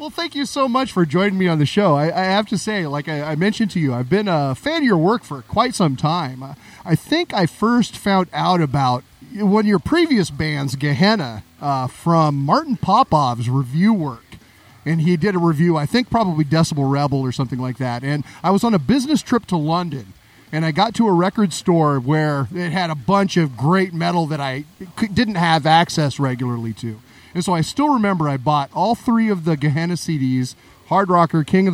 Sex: male